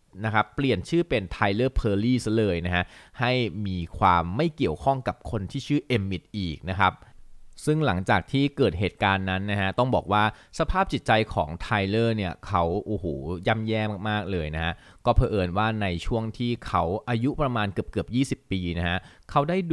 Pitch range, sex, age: 90-120 Hz, male, 20-39